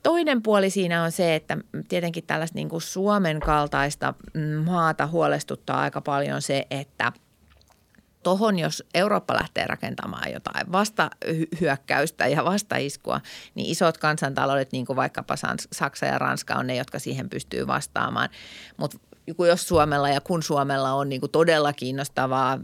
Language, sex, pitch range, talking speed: Finnish, female, 135-165 Hz, 135 wpm